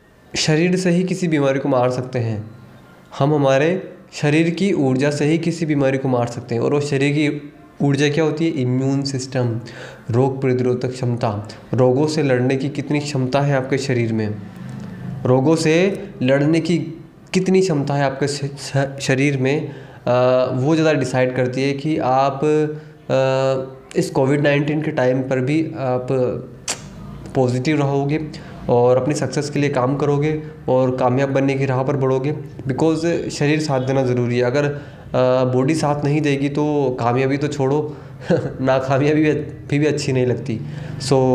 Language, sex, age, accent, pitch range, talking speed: Hindi, male, 20-39, native, 130-150 Hz, 165 wpm